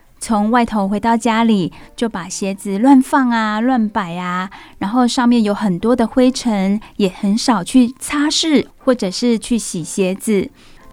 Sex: female